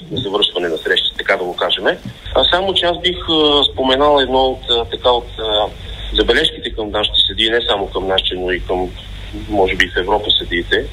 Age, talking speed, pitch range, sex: 40-59, 205 wpm, 100-135 Hz, male